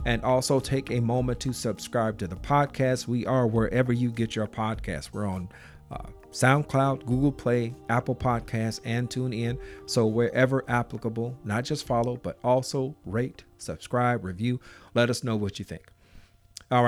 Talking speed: 165 wpm